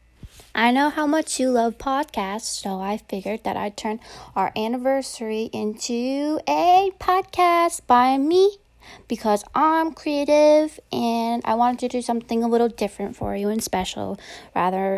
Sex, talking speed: female, 150 wpm